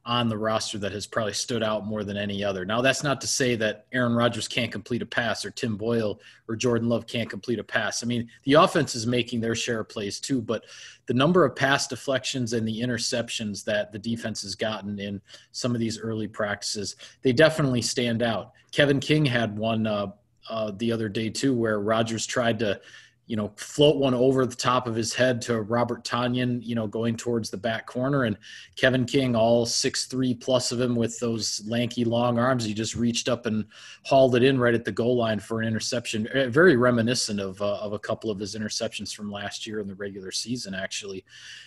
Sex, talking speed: male, 215 wpm